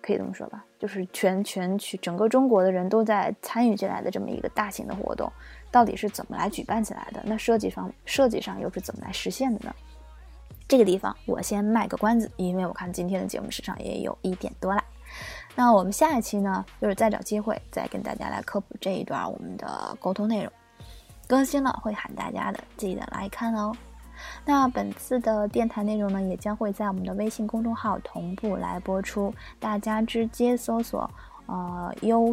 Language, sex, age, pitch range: Chinese, female, 20-39, 195-230 Hz